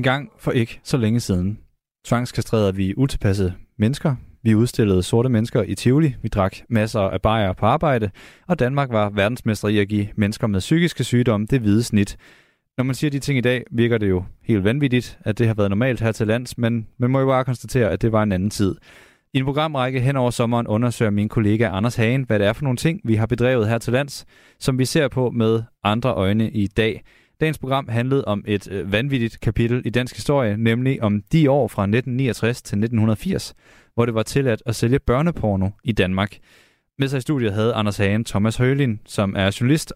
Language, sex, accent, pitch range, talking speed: Danish, male, native, 105-130 Hz, 215 wpm